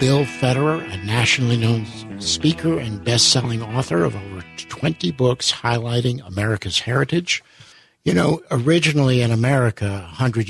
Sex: male